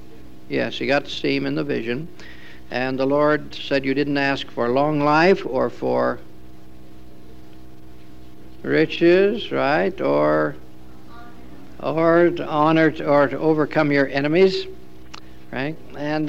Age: 60-79